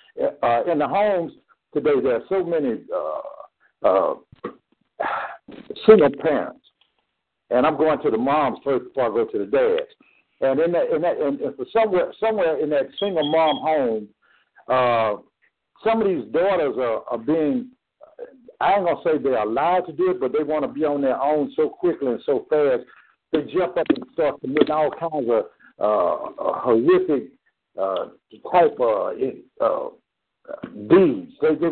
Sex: male